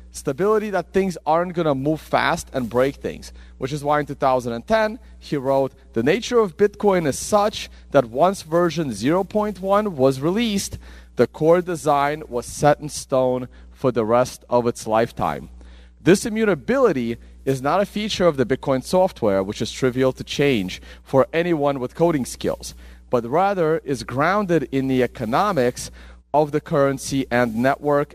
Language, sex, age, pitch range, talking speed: English, male, 30-49, 110-160 Hz, 160 wpm